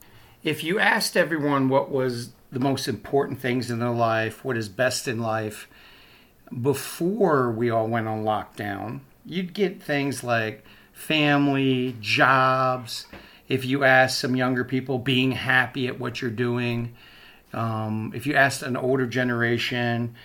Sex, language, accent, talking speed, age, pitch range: male, English, American, 145 wpm, 50-69, 120-140 Hz